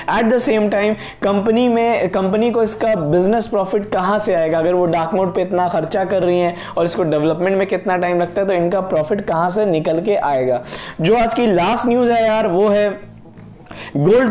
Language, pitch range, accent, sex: Hindi, 175-215 Hz, native, male